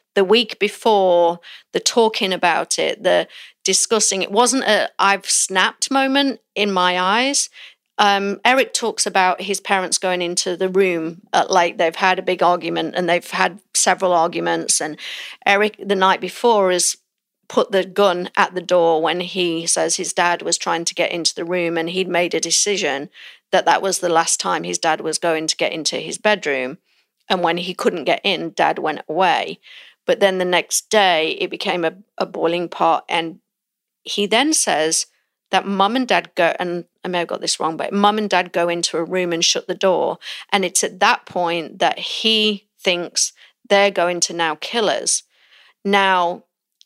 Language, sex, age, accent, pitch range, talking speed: English, female, 40-59, British, 175-200 Hz, 190 wpm